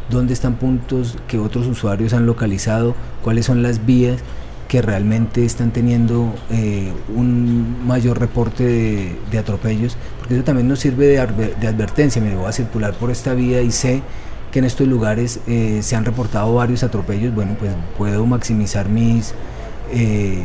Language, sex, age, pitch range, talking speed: Spanish, male, 30-49, 110-125 Hz, 165 wpm